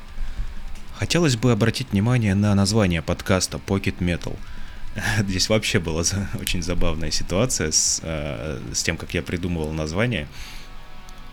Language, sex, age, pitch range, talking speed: Russian, male, 20-39, 80-105 Hz, 115 wpm